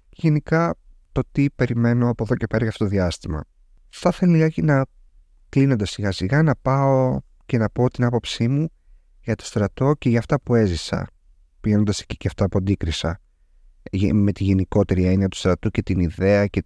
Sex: male